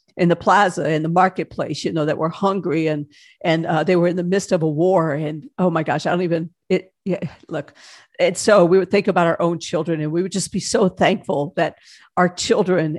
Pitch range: 155-185 Hz